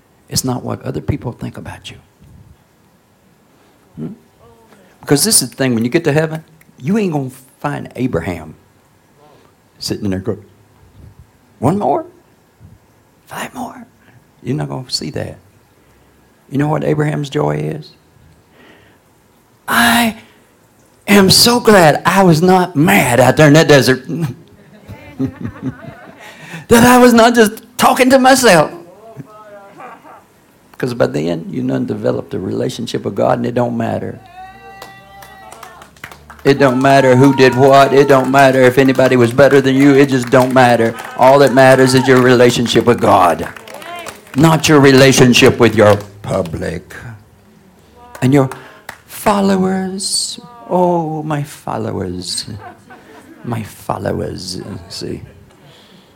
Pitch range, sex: 115-160 Hz, male